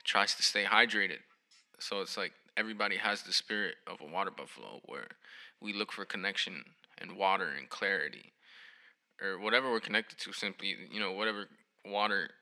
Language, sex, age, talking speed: English, male, 20-39, 165 wpm